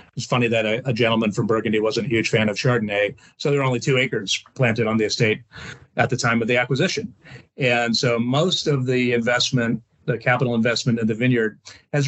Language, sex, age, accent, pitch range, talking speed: English, male, 40-59, American, 110-130 Hz, 215 wpm